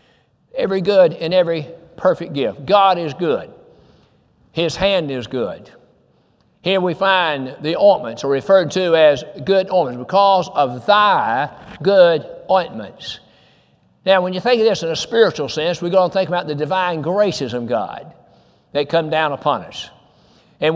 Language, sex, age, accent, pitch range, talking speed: English, male, 60-79, American, 155-195 Hz, 160 wpm